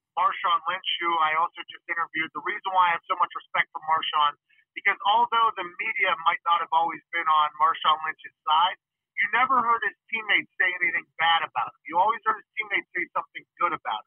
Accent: American